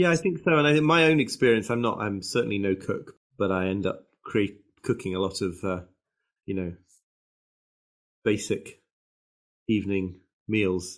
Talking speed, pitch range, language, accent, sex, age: 160 wpm, 95-120 Hz, English, British, male, 30-49